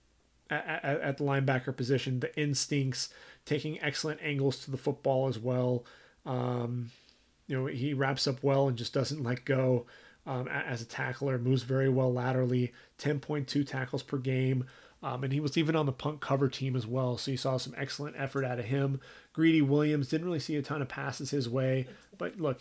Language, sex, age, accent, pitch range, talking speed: English, male, 30-49, American, 130-145 Hz, 190 wpm